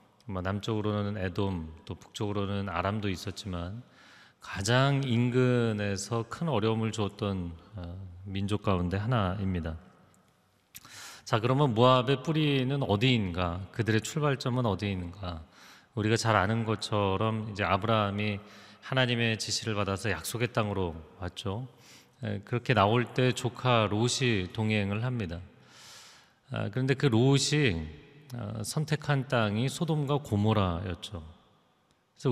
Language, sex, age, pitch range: Korean, male, 30-49, 100-130 Hz